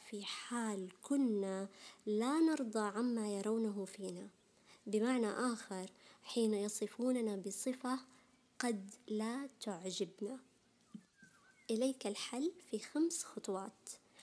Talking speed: 90 wpm